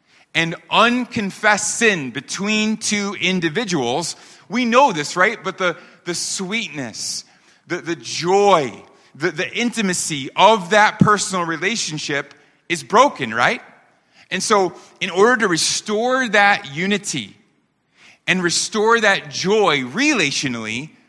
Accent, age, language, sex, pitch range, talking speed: American, 30-49, English, male, 125-175 Hz, 115 wpm